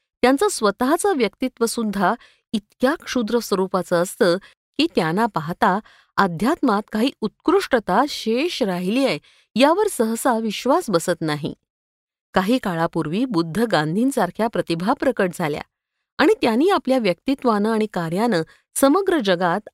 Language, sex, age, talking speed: Marathi, female, 50-69, 75 wpm